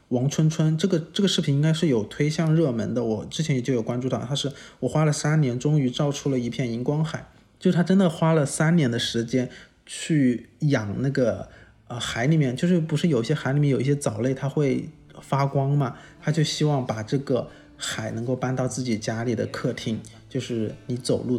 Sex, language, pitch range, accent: male, Chinese, 125-155 Hz, native